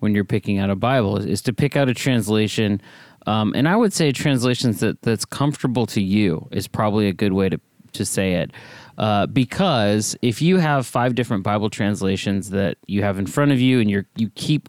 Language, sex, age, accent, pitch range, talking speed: English, male, 30-49, American, 100-130 Hz, 215 wpm